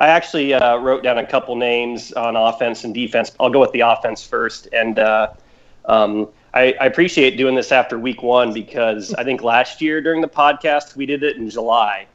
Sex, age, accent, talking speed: male, 30-49, American, 210 wpm